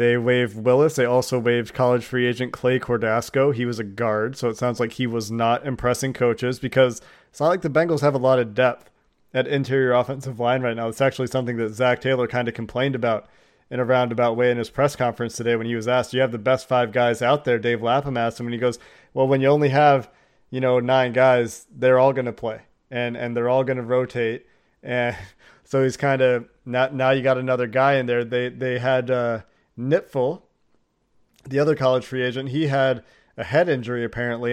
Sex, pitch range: male, 120-135 Hz